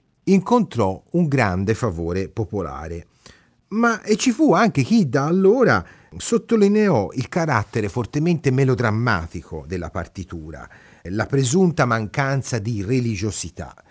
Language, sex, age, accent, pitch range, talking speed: Italian, male, 30-49, native, 95-140 Hz, 110 wpm